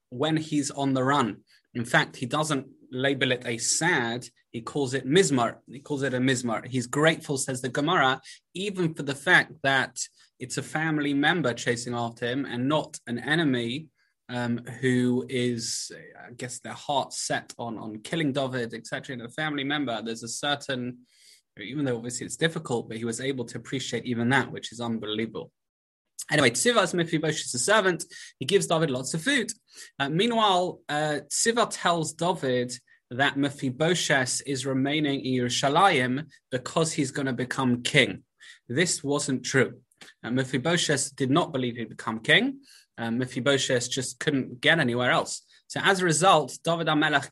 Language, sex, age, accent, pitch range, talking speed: English, male, 20-39, British, 125-155 Hz, 165 wpm